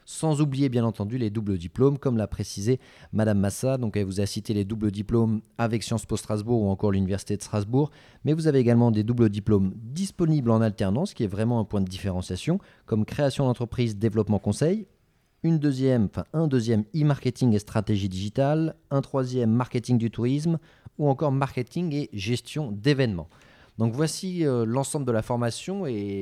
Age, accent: 30-49, French